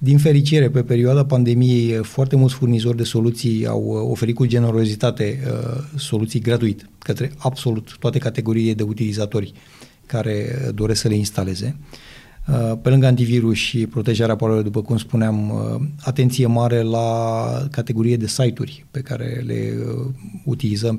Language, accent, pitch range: Romanian, native, 110-130 Hz